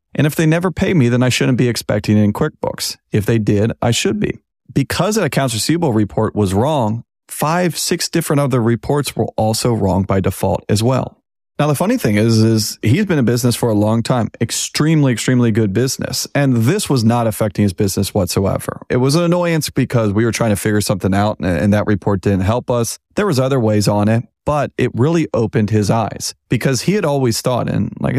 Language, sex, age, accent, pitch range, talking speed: English, male, 30-49, American, 105-130 Hz, 215 wpm